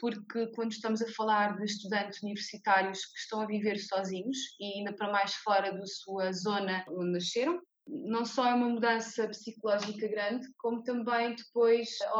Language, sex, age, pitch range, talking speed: Portuguese, female, 20-39, 210-240 Hz, 165 wpm